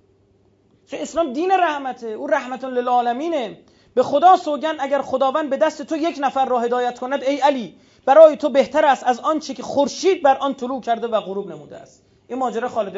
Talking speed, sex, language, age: 190 wpm, male, Persian, 30-49